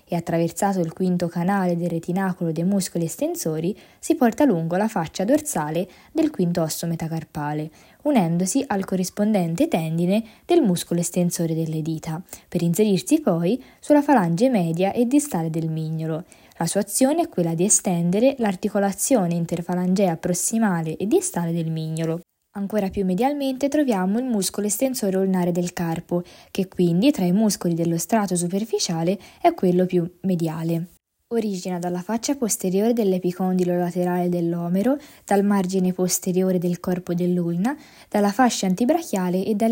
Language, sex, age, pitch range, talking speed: Italian, female, 20-39, 175-220 Hz, 140 wpm